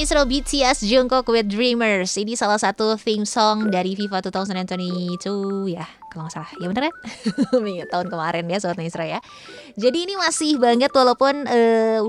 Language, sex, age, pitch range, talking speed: Indonesian, female, 20-39, 190-240 Hz, 160 wpm